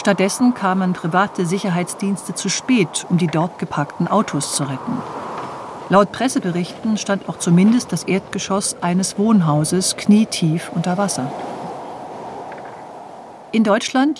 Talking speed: 115 wpm